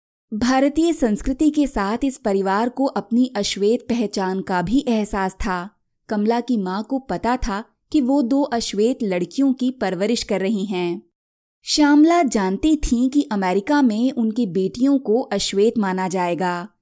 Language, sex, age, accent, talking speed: Hindi, female, 20-39, native, 150 wpm